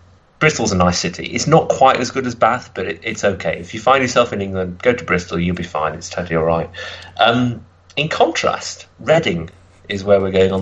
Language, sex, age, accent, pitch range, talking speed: English, male, 30-49, British, 90-130 Hz, 225 wpm